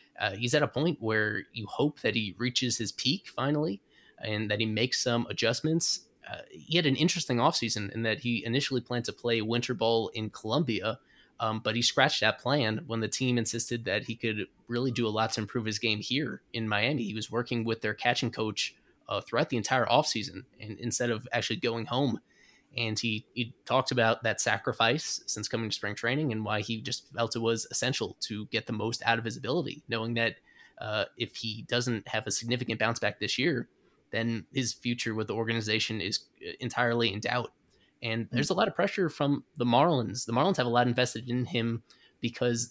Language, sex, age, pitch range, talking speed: English, male, 20-39, 110-125 Hz, 205 wpm